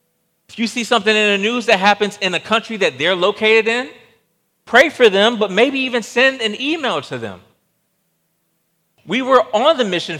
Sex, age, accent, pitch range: male, 40-59, American, 145-215 Hz